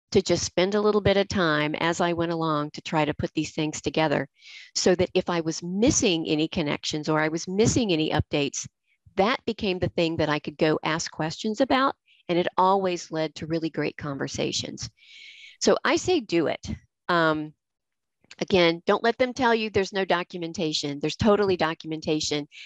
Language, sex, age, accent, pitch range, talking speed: English, female, 50-69, American, 155-205 Hz, 185 wpm